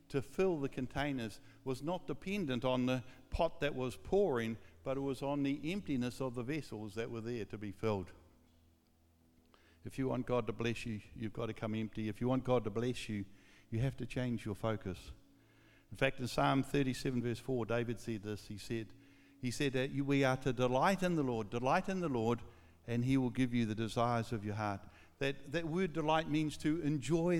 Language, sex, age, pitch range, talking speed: English, male, 60-79, 115-150 Hz, 210 wpm